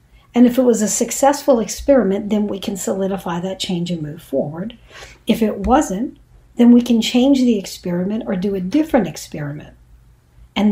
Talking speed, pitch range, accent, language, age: 175 wpm, 190-245 Hz, American, English, 60-79